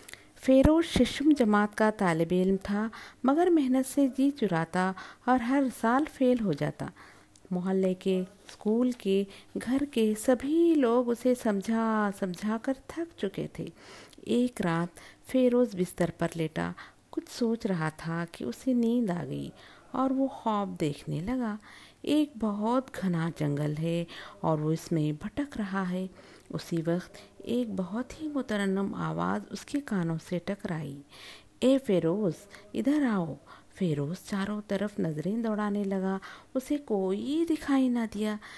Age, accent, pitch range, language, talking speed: 50-69, native, 170-245 Hz, Telugu, 60 wpm